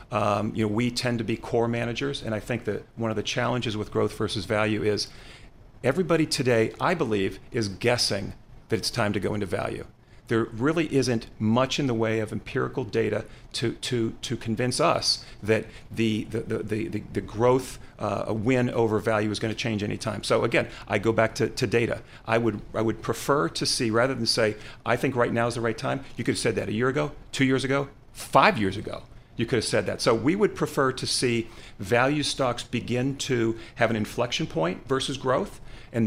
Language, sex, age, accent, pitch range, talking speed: English, male, 40-59, American, 110-125 Hz, 215 wpm